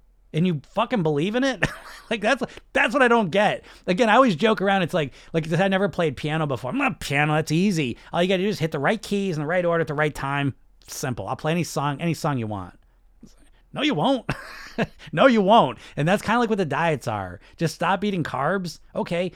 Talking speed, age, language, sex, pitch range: 240 wpm, 30-49, English, male, 120-165 Hz